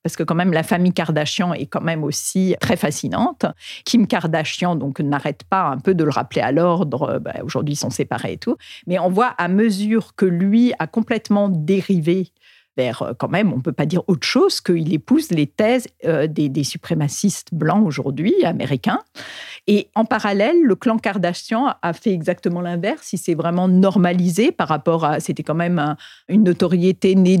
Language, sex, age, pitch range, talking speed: French, female, 50-69, 170-215 Hz, 190 wpm